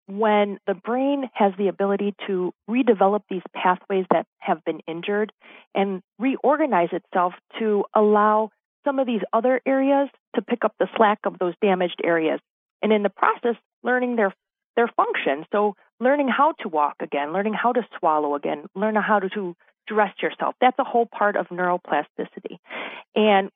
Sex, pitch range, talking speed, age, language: female, 180-230 Hz, 160 wpm, 40-59, English